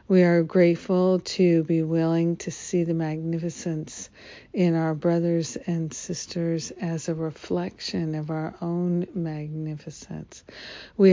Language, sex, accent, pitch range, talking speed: English, female, American, 160-175 Hz, 125 wpm